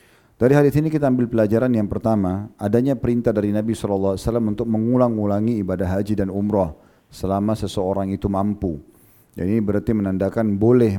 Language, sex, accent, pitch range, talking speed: Indonesian, male, native, 100-115 Hz, 155 wpm